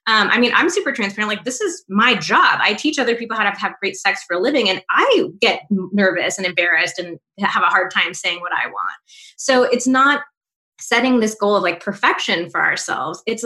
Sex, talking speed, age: female, 225 wpm, 20-39